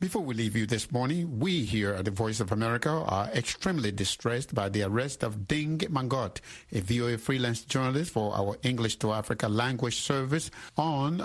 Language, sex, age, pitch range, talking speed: English, male, 60-79, 110-140 Hz, 180 wpm